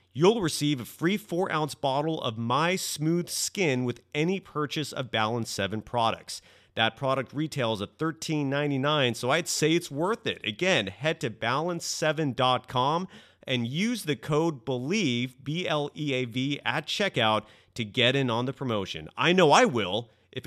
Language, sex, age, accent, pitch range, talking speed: English, male, 30-49, American, 115-155 Hz, 150 wpm